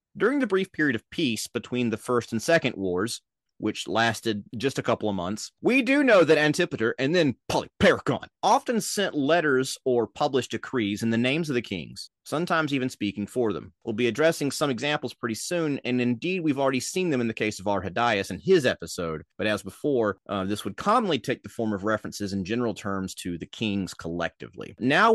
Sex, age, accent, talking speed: male, 30-49, American, 205 wpm